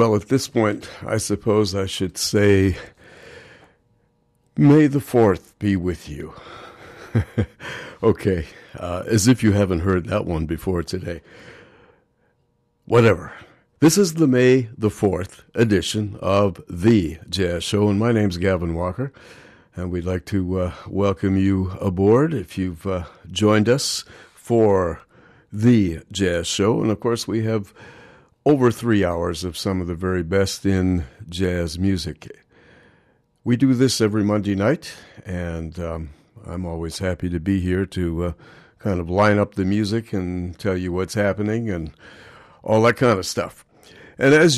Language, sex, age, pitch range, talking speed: English, male, 60-79, 90-115 Hz, 150 wpm